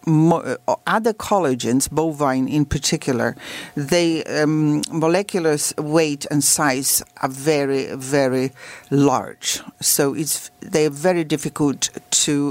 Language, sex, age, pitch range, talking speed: English, female, 50-69, 140-165 Hz, 105 wpm